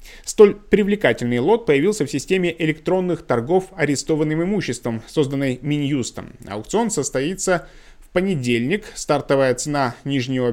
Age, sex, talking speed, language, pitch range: 20-39, male, 110 wpm, Russian, 125-160 Hz